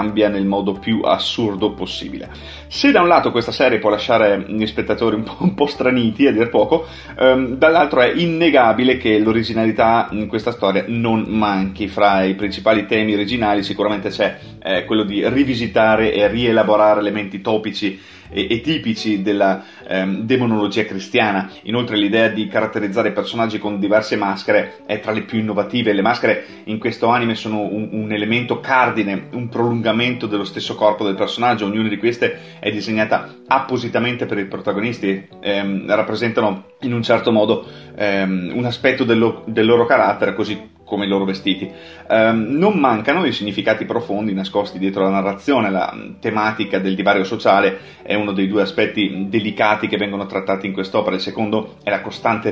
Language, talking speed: Italian, 165 wpm